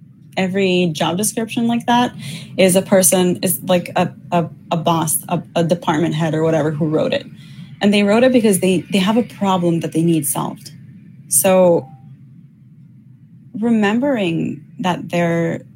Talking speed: 155 wpm